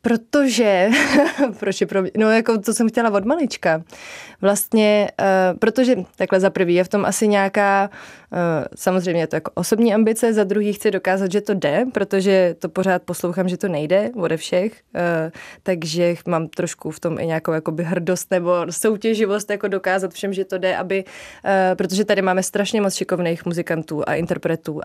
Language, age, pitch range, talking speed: Czech, 20-39, 175-205 Hz, 175 wpm